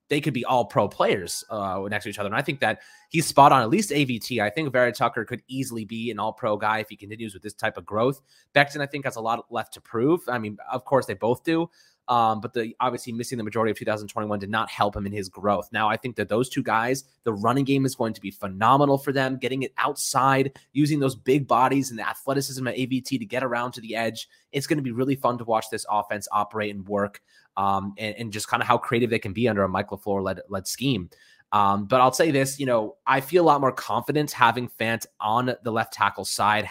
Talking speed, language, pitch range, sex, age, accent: 260 wpm, English, 105-130 Hz, male, 20-39, American